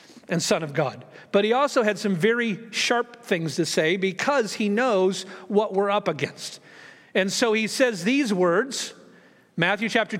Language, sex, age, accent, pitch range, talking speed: English, male, 50-69, American, 190-240 Hz, 170 wpm